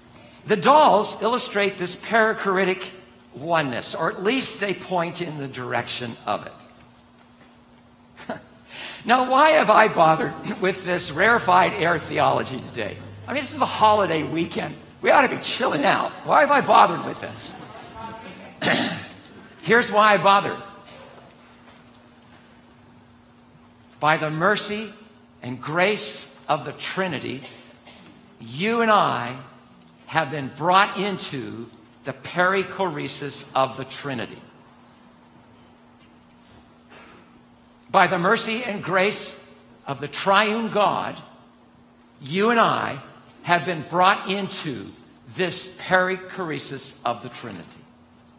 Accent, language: American, English